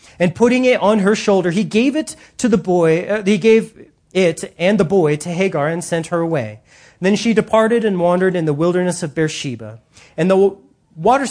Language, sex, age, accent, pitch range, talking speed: English, male, 30-49, American, 150-195 Hz, 205 wpm